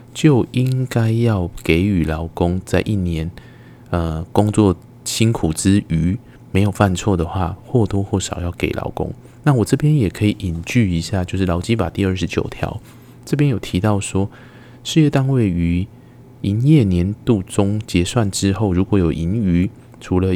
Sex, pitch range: male, 90-120 Hz